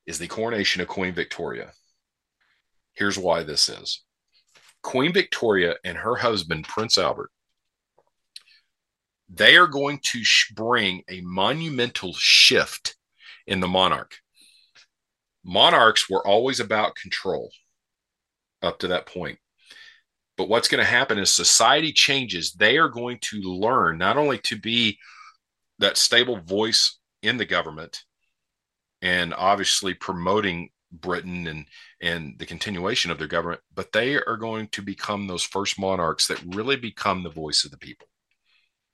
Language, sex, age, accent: English, male, 40-59, American